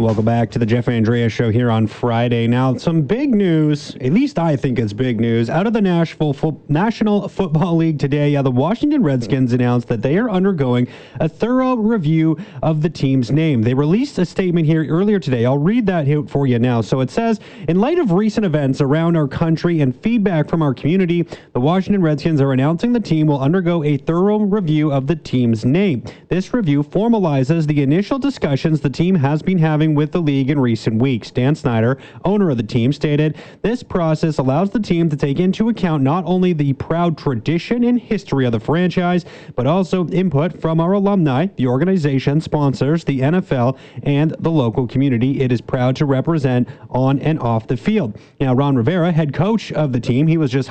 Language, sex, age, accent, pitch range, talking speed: English, male, 30-49, American, 135-180 Hz, 200 wpm